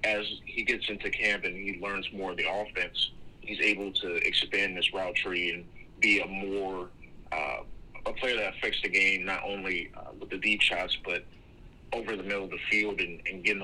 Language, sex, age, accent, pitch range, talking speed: English, male, 30-49, American, 90-100 Hz, 205 wpm